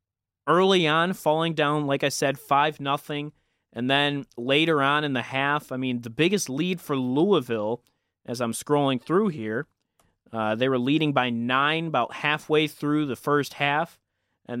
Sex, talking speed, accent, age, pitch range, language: male, 170 wpm, American, 30-49, 120-170 Hz, English